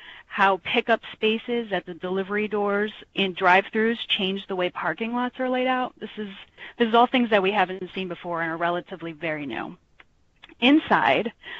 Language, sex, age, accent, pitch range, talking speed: English, female, 30-49, American, 185-225 Hz, 175 wpm